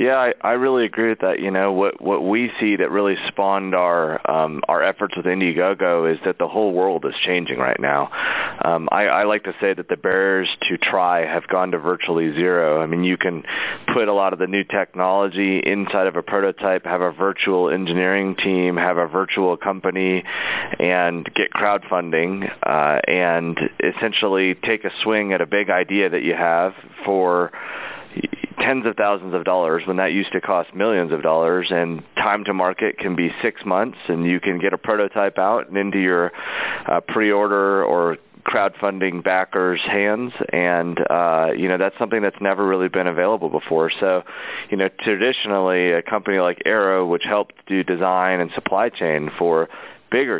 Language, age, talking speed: English, 30-49, 185 wpm